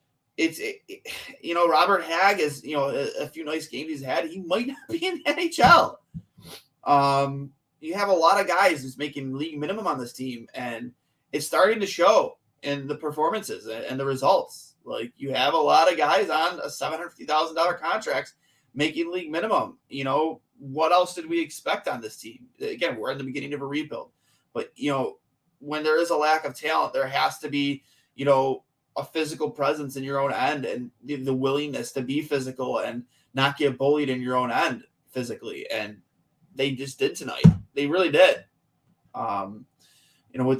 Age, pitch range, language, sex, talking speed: 20-39, 130-155 Hz, English, male, 195 wpm